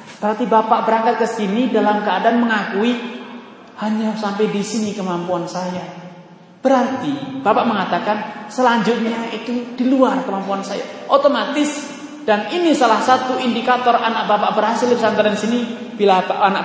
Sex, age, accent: male, 30-49, native